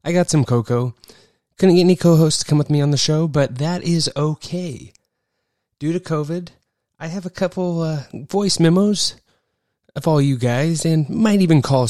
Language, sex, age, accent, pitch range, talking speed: English, male, 20-39, American, 125-165 Hz, 185 wpm